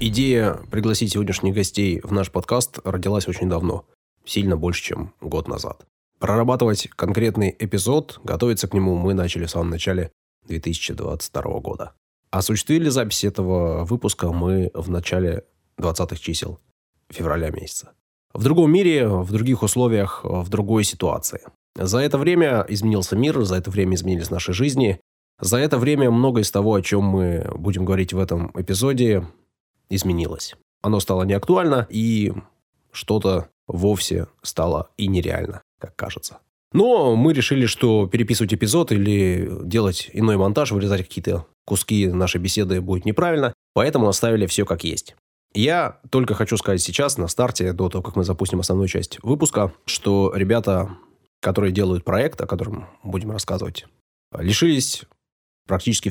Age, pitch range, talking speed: 20-39, 90-110 Hz, 140 wpm